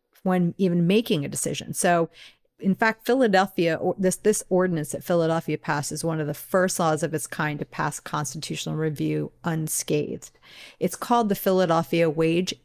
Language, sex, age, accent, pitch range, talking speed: English, female, 40-59, American, 165-200 Hz, 160 wpm